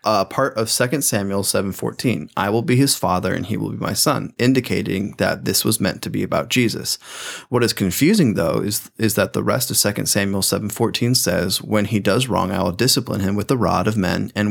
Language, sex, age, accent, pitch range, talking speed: English, male, 20-39, American, 100-120 Hz, 225 wpm